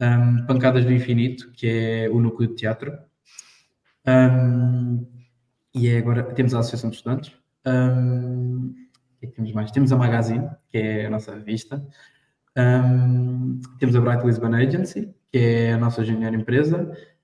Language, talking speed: Portuguese, 155 wpm